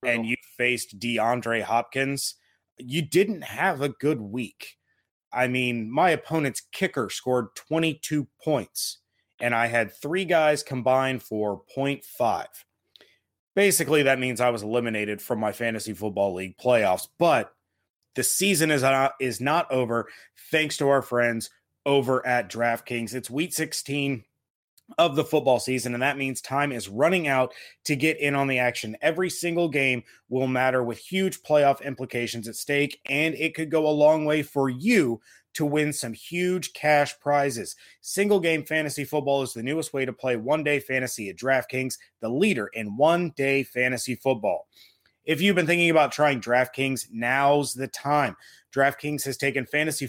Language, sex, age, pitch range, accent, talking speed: English, male, 30-49, 120-150 Hz, American, 160 wpm